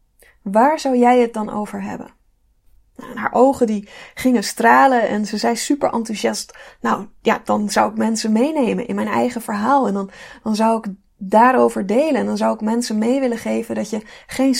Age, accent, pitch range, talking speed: 20-39, Dutch, 220-265 Hz, 190 wpm